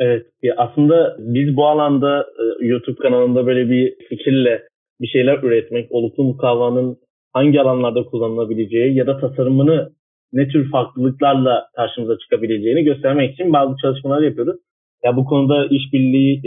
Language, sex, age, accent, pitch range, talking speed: Turkish, male, 30-49, native, 120-140 Hz, 130 wpm